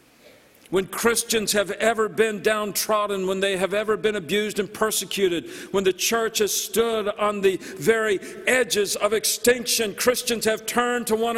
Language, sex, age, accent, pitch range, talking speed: English, male, 50-69, American, 190-225 Hz, 160 wpm